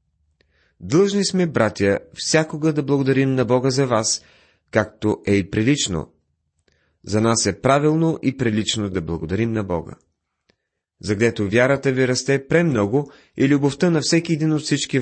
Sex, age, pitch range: male, 30-49, 100-135 Hz